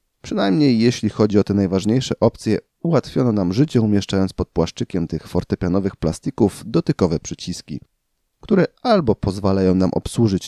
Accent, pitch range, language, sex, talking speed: native, 85-115 Hz, Polish, male, 130 wpm